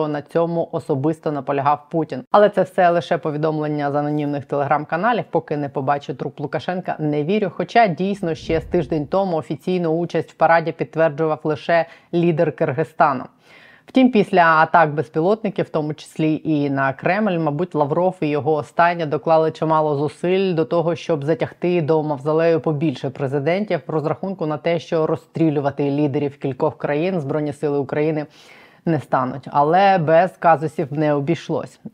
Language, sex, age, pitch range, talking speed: Ukrainian, female, 20-39, 150-175 Hz, 150 wpm